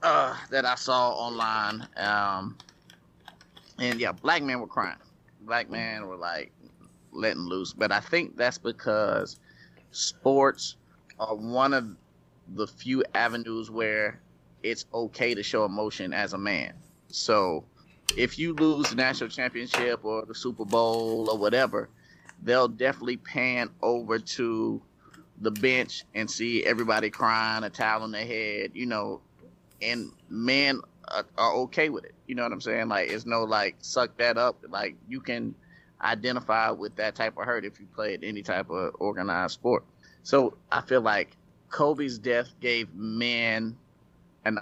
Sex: male